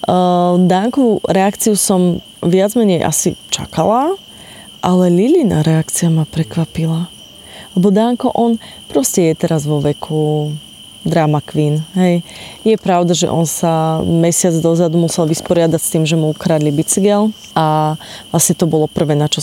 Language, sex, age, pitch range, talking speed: Slovak, female, 20-39, 165-205 Hz, 140 wpm